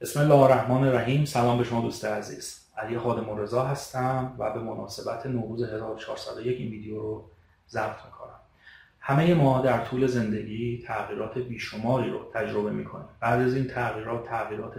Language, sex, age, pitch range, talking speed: Persian, male, 30-49, 110-135 Hz, 160 wpm